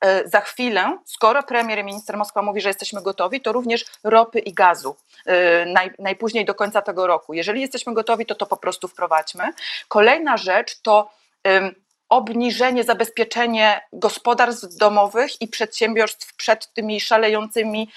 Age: 30-49